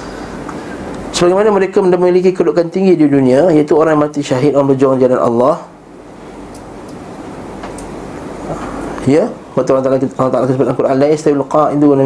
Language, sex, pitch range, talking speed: Malay, male, 135-155 Hz, 125 wpm